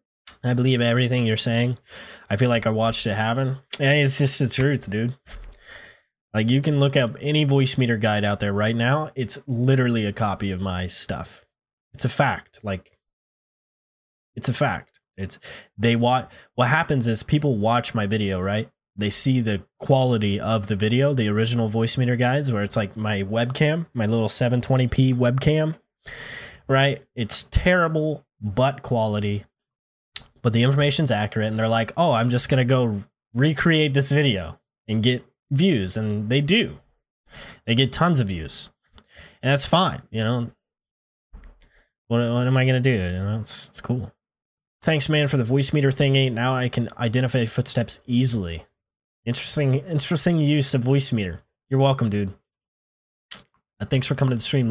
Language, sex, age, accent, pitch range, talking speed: English, male, 20-39, American, 110-135 Hz, 165 wpm